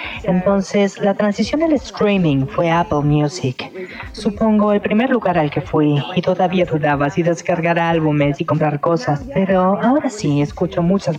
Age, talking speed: 30-49, 155 wpm